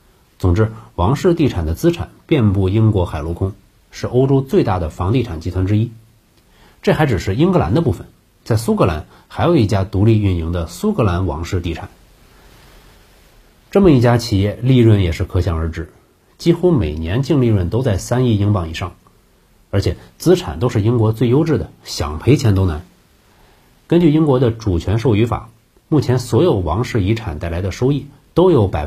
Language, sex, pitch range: Chinese, male, 90-120 Hz